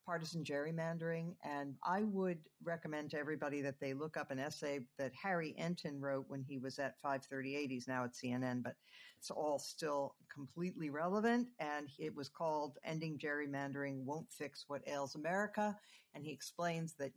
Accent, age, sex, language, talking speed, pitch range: American, 50-69, female, English, 170 wpm, 135-165 Hz